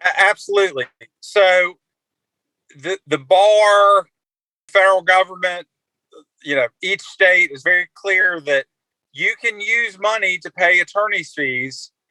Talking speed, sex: 115 wpm, male